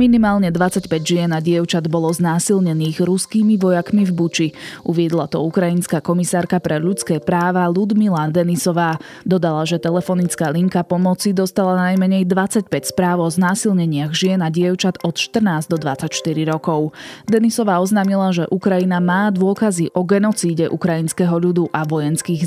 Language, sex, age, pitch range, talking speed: Slovak, female, 20-39, 165-190 Hz, 135 wpm